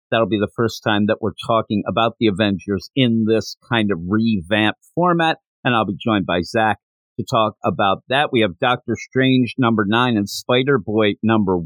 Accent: American